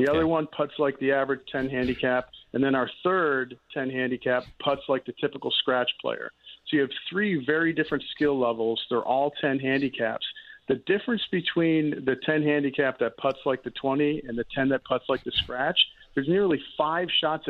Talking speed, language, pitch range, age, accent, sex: 190 wpm, English, 125-150 Hz, 50-69, American, male